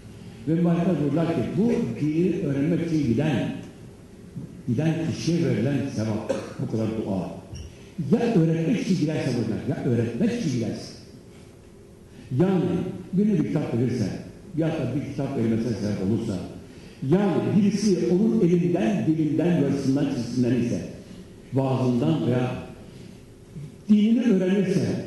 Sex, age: male, 60-79